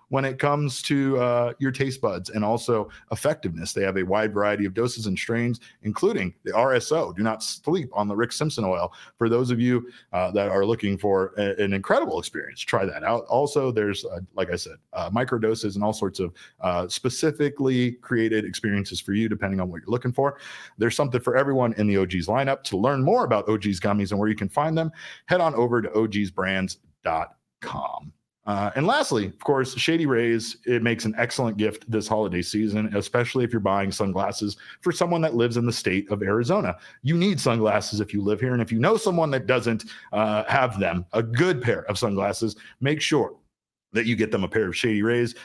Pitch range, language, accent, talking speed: 100-125 Hz, English, American, 210 wpm